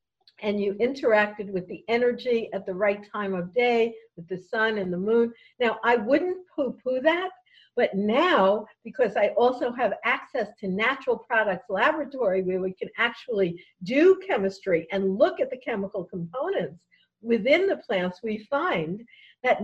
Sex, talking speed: female, 160 wpm